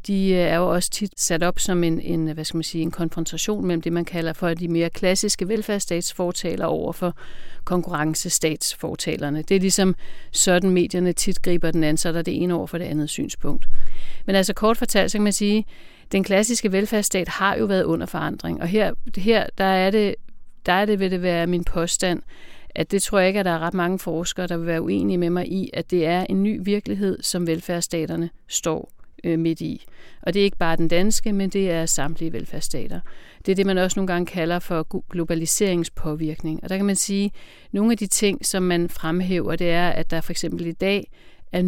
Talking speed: 215 wpm